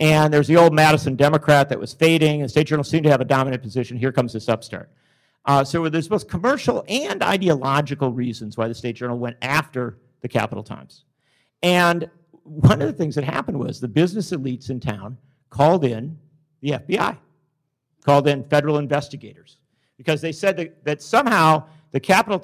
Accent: American